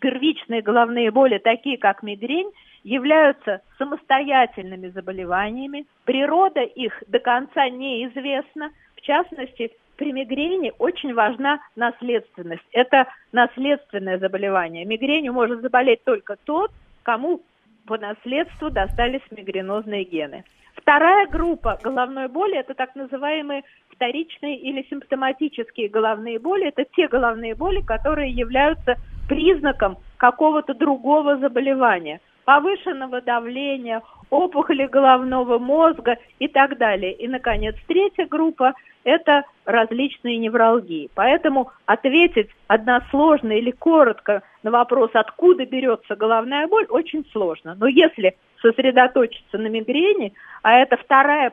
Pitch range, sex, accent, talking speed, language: 225-295 Hz, female, native, 110 wpm, Russian